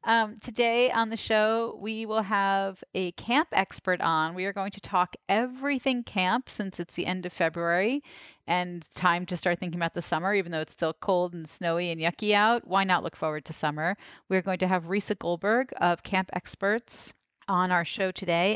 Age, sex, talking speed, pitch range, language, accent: 30-49, female, 200 wpm, 170-210 Hz, English, American